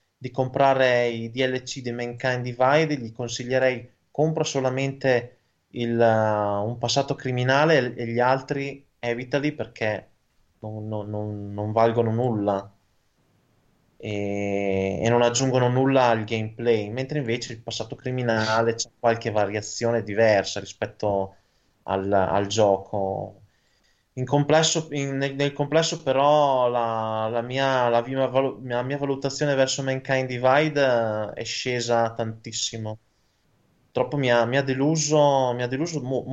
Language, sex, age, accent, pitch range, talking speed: Italian, male, 20-39, native, 110-135 Hz, 125 wpm